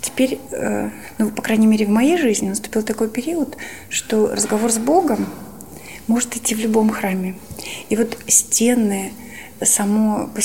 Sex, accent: female, native